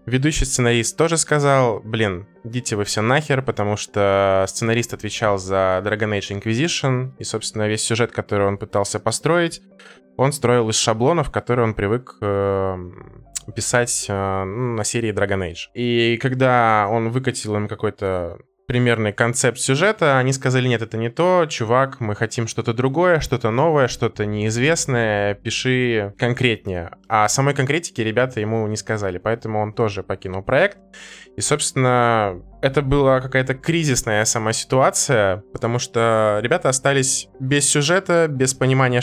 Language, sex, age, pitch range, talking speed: Russian, male, 20-39, 105-130 Hz, 140 wpm